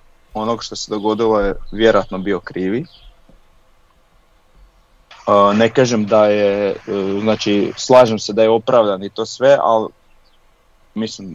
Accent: Serbian